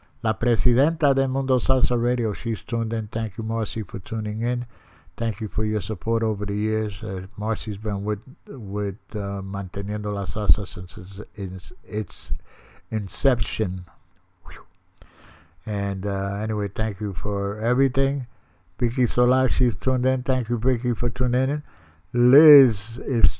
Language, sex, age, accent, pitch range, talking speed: English, male, 60-79, American, 100-125 Hz, 135 wpm